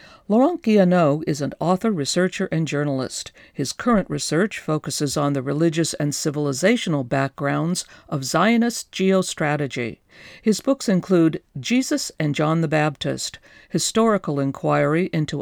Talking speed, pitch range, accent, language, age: 125 wpm, 145-210 Hz, American, English, 50-69